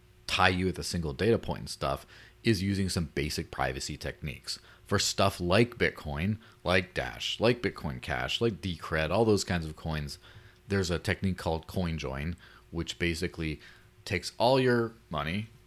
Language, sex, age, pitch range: English, male, 30-49, 80-105 Hz